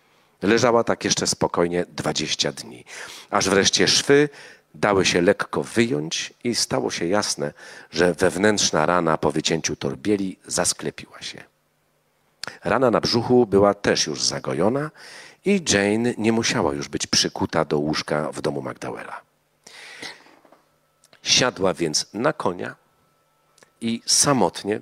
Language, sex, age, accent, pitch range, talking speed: Polish, male, 40-59, native, 85-125 Hz, 120 wpm